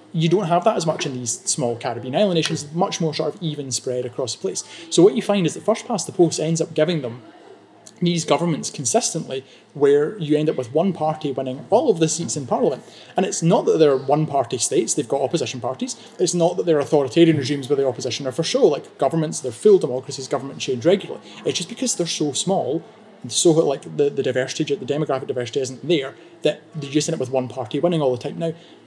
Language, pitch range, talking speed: English, 135-170 Hz, 235 wpm